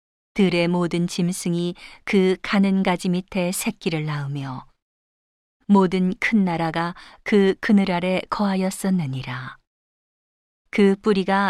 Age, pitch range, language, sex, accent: 40-59, 165-200 Hz, Korean, female, native